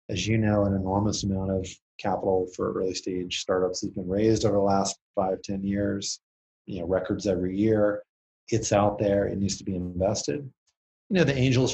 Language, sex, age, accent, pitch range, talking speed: English, male, 30-49, American, 100-120 Hz, 195 wpm